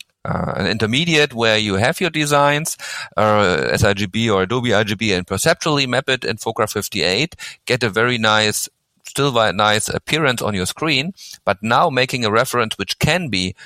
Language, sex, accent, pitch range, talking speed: English, male, German, 100-125 Hz, 170 wpm